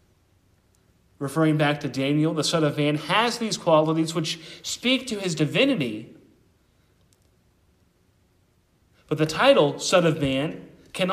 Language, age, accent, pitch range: English, 40-59, American, 135-210 Hz